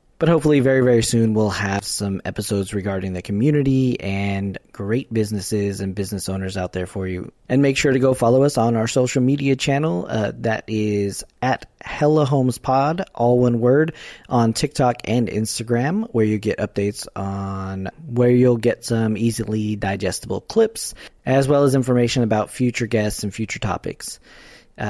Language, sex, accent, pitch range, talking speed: English, male, American, 105-140 Hz, 170 wpm